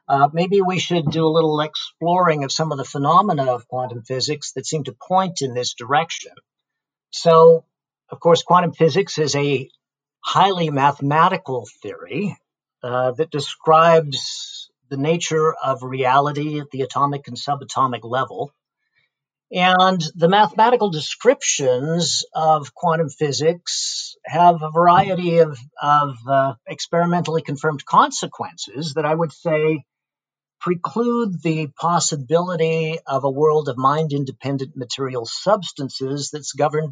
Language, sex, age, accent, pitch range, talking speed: English, male, 50-69, American, 140-170 Hz, 125 wpm